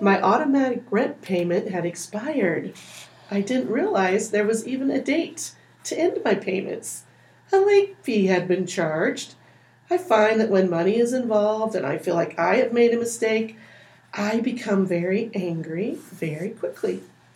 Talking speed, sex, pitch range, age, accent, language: 160 wpm, female, 180-230 Hz, 40-59, American, English